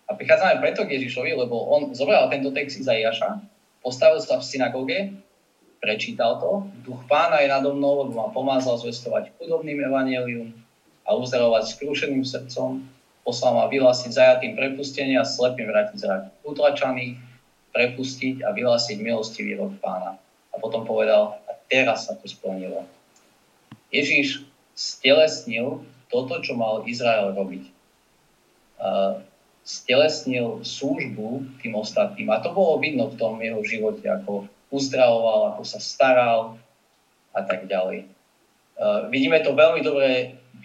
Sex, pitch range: male, 115-155 Hz